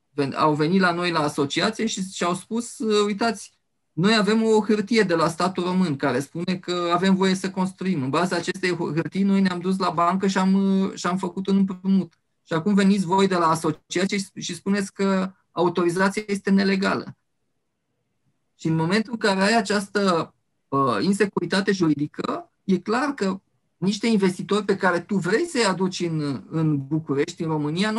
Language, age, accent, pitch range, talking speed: Romanian, 20-39, native, 155-200 Hz, 170 wpm